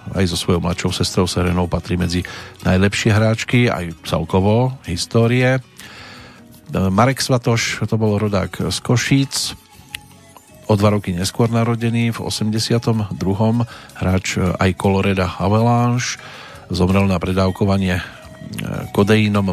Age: 40-59